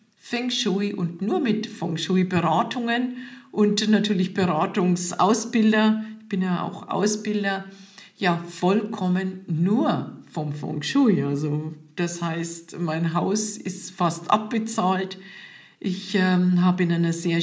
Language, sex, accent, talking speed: German, female, German, 120 wpm